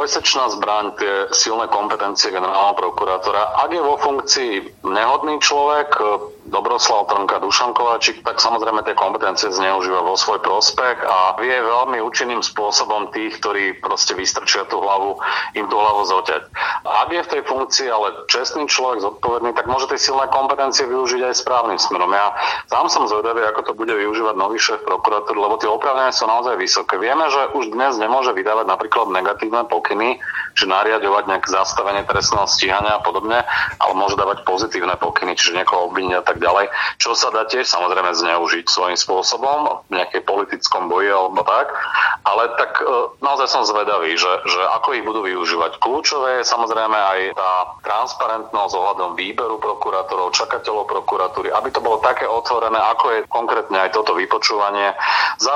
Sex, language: male, Slovak